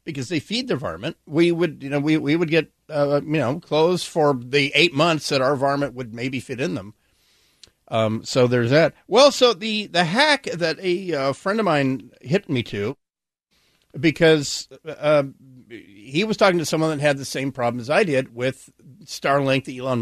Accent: American